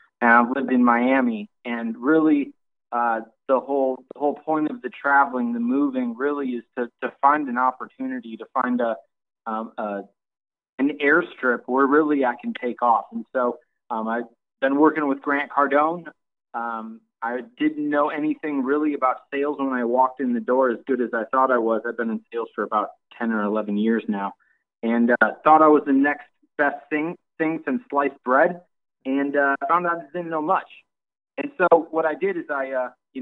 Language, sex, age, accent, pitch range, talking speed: English, male, 20-39, American, 120-145 Hz, 195 wpm